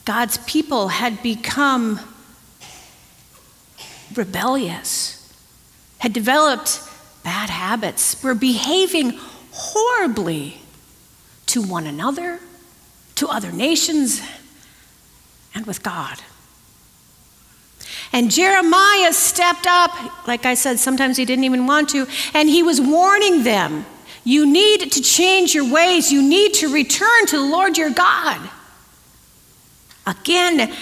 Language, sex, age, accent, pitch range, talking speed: English, female, 50-69, American, 230-315 Hz, 105 wpm